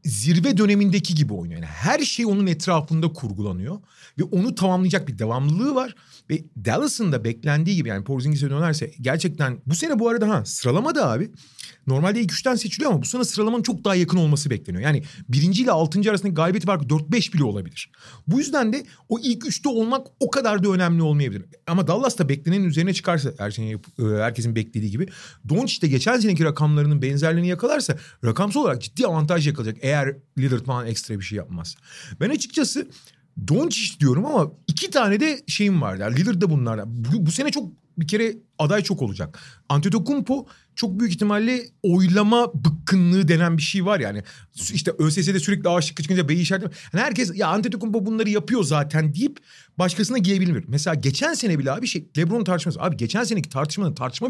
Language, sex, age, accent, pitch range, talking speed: Turkish, male, 40-59, native, 145-210 Hz, 175 wpm